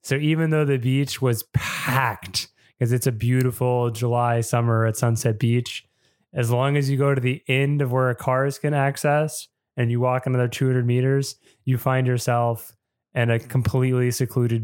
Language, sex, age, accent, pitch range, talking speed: English, male, 20-39, American, 115-135 Hz, 175 wpm